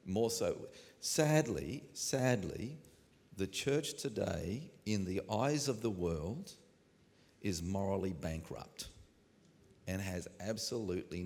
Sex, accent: male, Australian